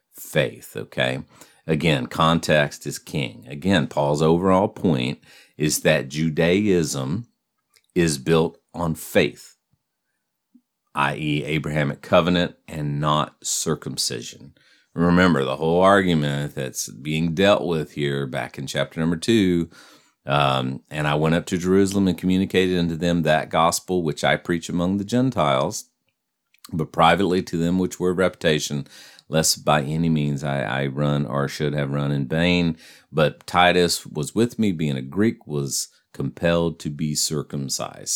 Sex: male